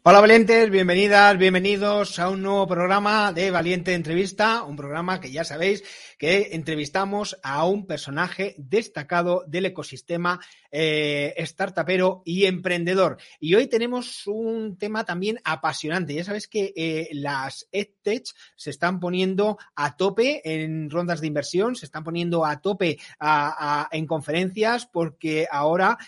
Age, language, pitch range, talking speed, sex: 30-49, Spanish, 150-195 Hz, 135 wpm, male